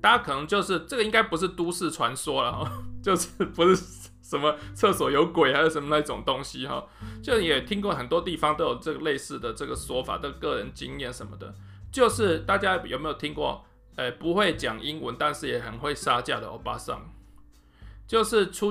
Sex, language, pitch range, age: male, Chinese, 130-190 Hz, 20-39